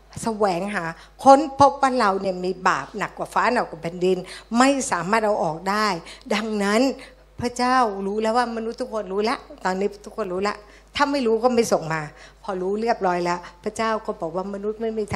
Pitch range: 195-245 Hz